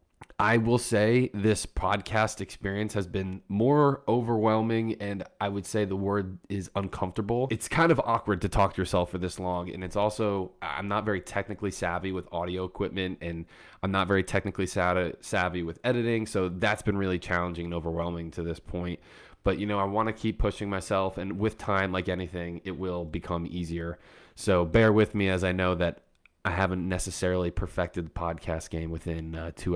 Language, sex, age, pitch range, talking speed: English, male, 20-39, 90-105 Hz, 190 wpm